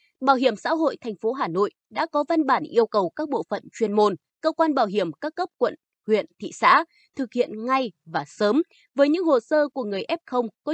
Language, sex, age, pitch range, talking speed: Vietnamese, female, 20-39, 215-310 Hz, 235 wpm